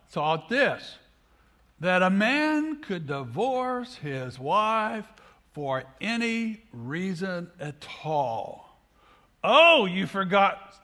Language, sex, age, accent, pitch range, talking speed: English, male, 60-79, American, 145-230 Hz, 95 wpm